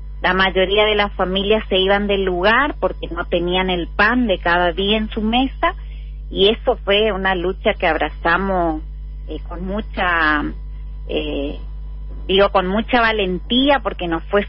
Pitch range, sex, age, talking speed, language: 170-210 Hz, female, 30-49, 155 wpm, Spanish